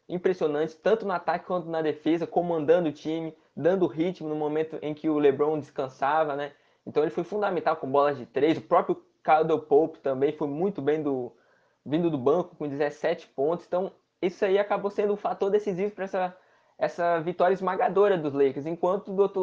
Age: 20-39